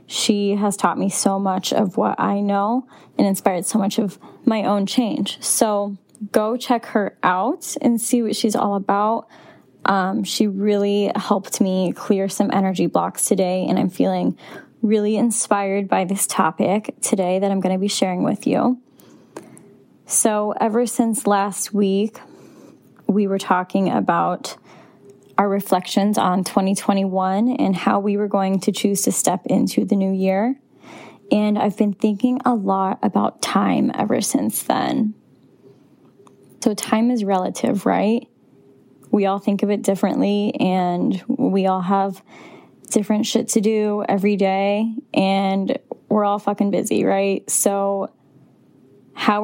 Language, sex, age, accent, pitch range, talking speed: English, female, 10-29, American, 195-220 Hz, 145 wpm